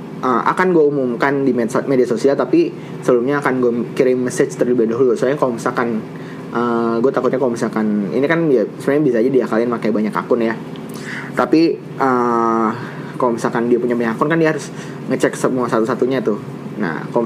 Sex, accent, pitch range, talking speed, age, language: male, native, 115-145 Hz, 175 wpm, 20-39, Indonesian